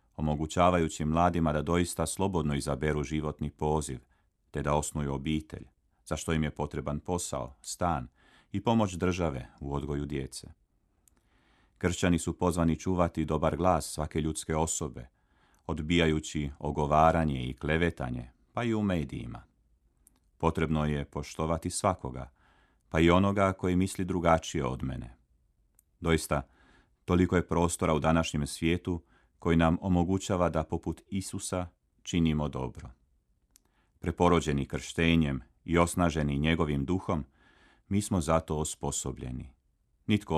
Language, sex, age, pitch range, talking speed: Croatian, male, 40-59, 75-85 Hz, 120 wpm